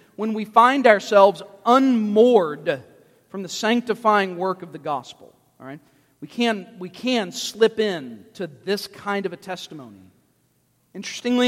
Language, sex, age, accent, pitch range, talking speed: English, male, 40-59, American, 185-235 Hz, 125 wpm